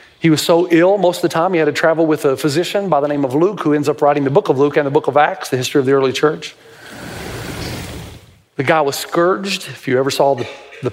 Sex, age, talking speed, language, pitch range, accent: male, 40-59, 270 wpm, English, 140-180 Hz, American